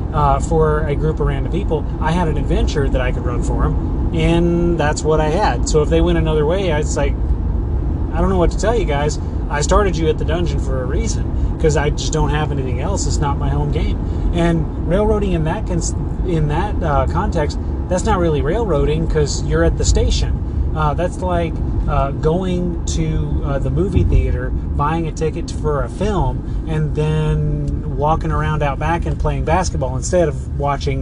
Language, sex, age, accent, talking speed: English, male, 30-49, American, 200 wpm